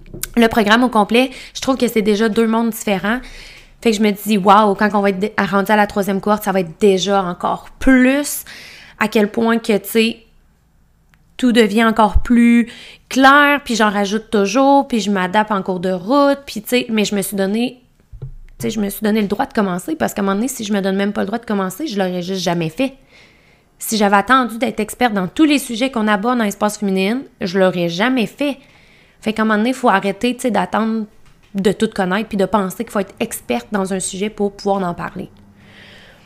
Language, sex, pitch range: French, female, 195-240 Hz